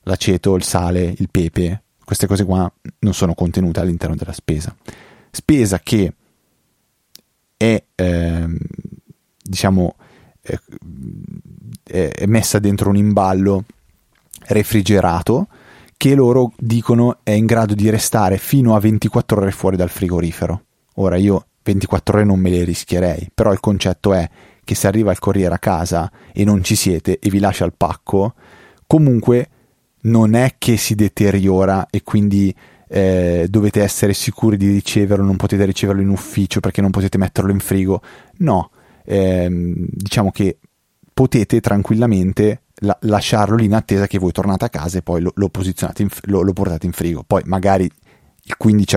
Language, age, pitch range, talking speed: Italian, 30-49, 90-105 Hz, 155 wpm